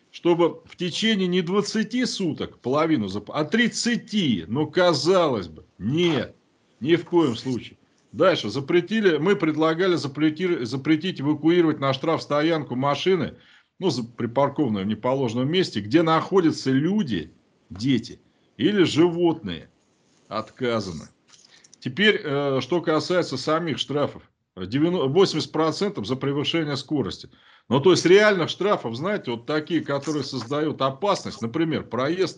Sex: male